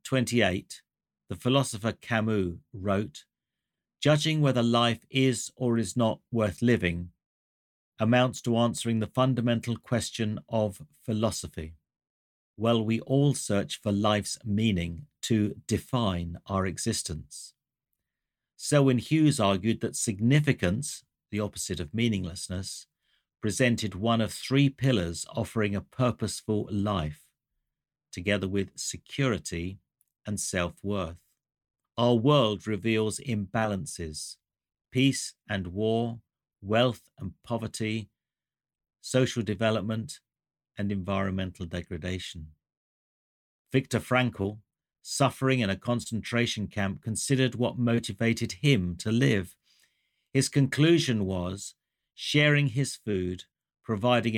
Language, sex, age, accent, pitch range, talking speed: English, male, 50-69, British, 95-120 Hz, 105 wpm